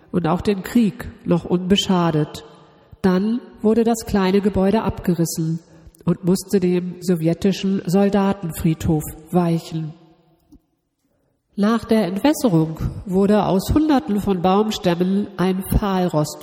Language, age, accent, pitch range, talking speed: German, 50-69, German, 170-210 Hz, 100 wpm